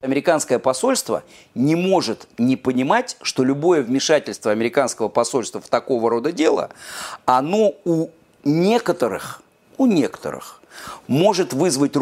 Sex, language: male, Russian